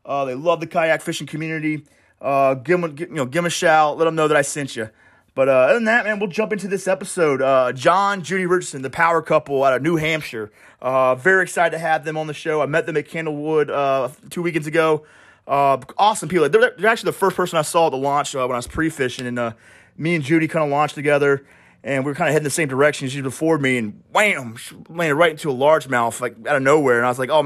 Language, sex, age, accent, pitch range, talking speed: English, male, 30-49, American, 135-170 Hz, 265 wpm